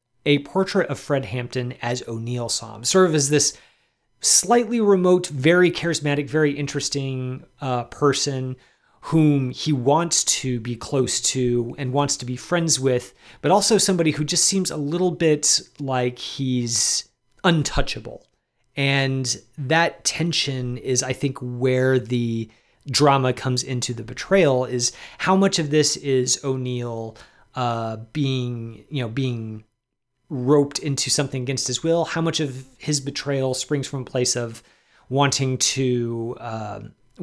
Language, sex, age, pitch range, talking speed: English, male, 30-49, 125-155 Hz, 140 wpm